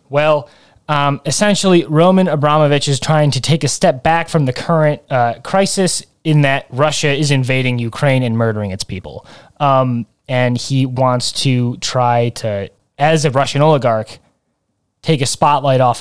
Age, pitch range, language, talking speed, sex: 20-39, 115-140 Hz, English, 155 wpm, male